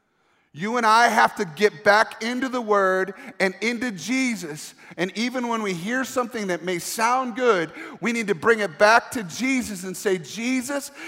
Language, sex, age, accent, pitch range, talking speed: English, male, 40-59, American, 200-255 Hz, 185 wpm